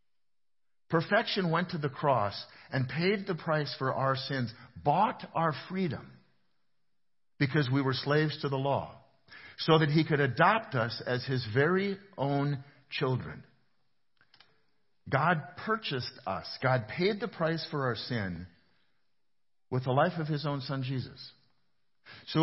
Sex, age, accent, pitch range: male, 50-69, American, 130-165 Hz